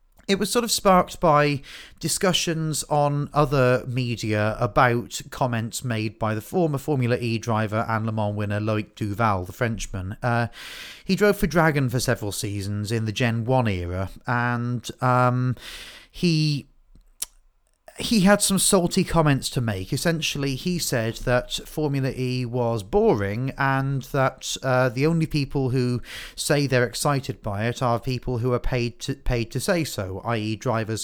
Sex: male